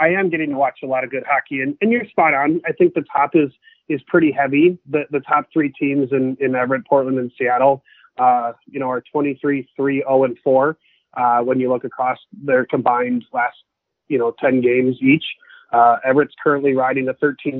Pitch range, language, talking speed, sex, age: 130-145 Hz, English, 210 wpm, male, 30-49